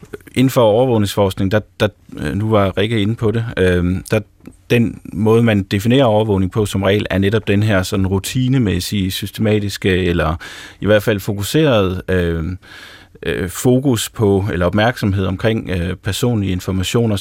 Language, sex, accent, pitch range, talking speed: Danish, male, native, 95-115 Hz, 150 wpm